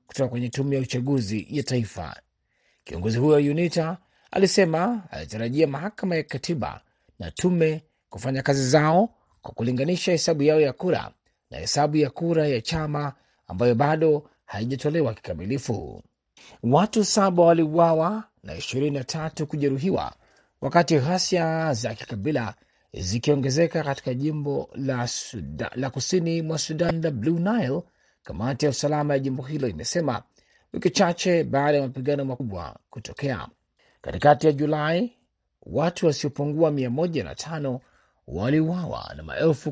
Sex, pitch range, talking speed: male, 130-165 Hz, 120 wpm